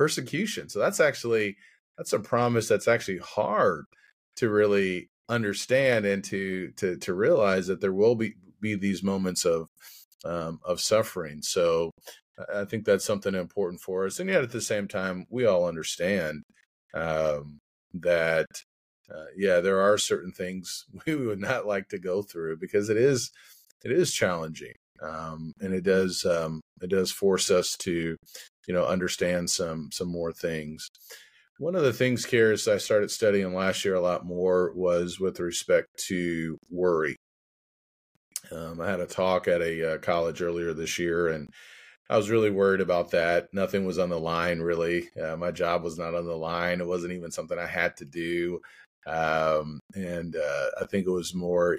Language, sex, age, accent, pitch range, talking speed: English, male, 30-49, American, 85-100 Hz, 175 wpm